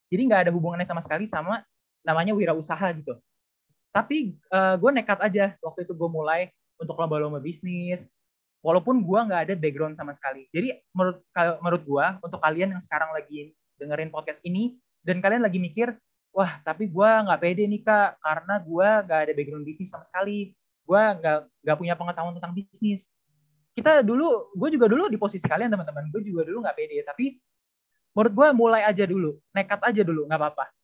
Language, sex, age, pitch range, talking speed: Indonesian, male, 20-39, 155-210 Hz, 175 wpm